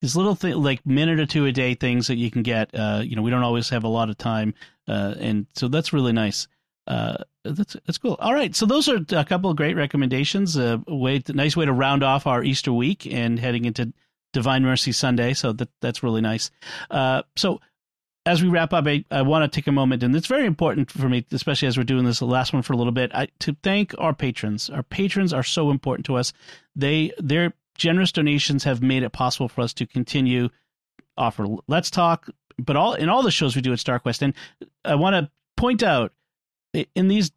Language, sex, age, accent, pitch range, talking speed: English, male, 40-59, American, 125-155 Hz, 230 wpm